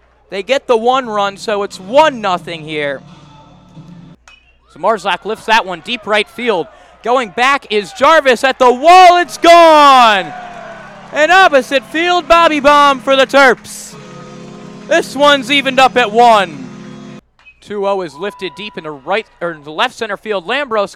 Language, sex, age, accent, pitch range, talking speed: English, male, 20-39, American, 195-265 Hz, 155 wpm